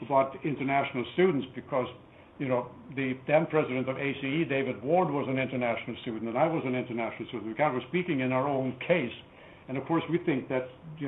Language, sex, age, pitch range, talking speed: English, male, 70-89, 125-160 Hz, 210 wpm